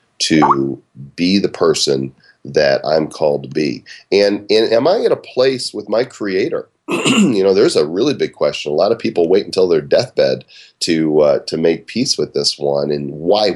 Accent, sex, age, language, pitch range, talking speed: American, male, 40-59, English, 70-120 Hz, 195 wpm